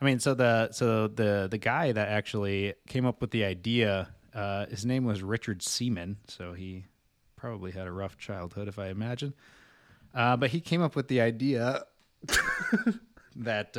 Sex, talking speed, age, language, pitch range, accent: male, 175 wpm, 20-39, English, 100-120 Hz, American